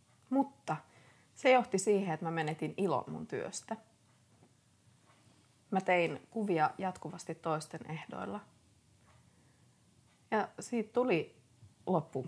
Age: 30-49